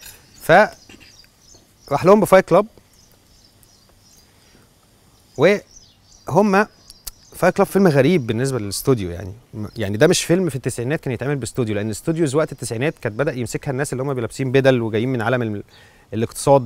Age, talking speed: 30-49, 135 wpm